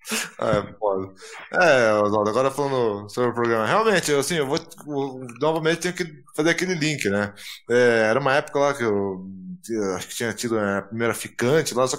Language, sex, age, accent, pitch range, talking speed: Portuguese, male, 20-39, Brazilian, 115-155 Hz, 185 wpm